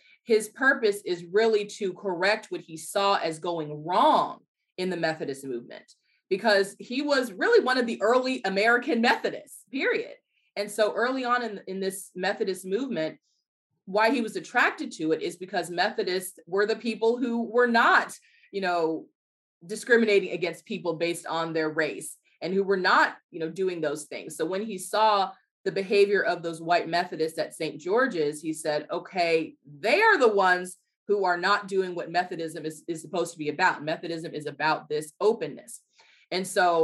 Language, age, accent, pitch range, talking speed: English, 30-49, American, 165-220 Hz, 175 wpm